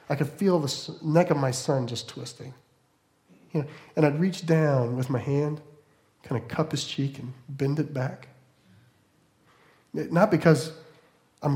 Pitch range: 125-165 Hz